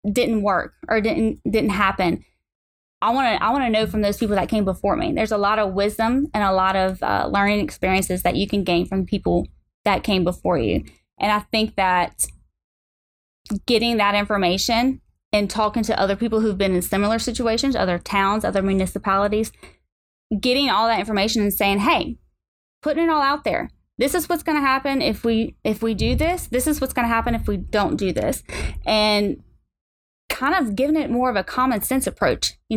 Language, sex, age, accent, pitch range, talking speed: English, female, 20-39, American, 200-250 Hz, 200 wpm